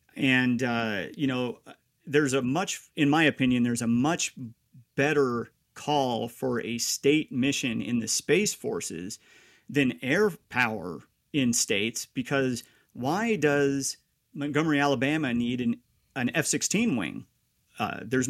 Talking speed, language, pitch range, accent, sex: 130 wpm, English, 120-145 Hz, American, male